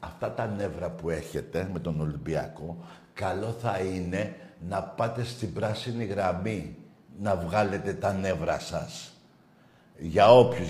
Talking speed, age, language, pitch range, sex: 130 wpm, 60-79, Greek, 110-150 Hz, male